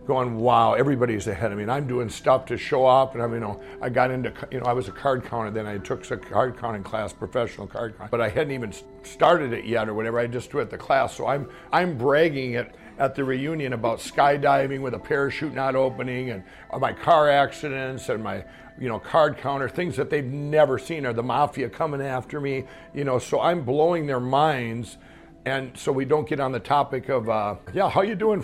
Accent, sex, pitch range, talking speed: American, male, 110-140 Hz, 230 wpm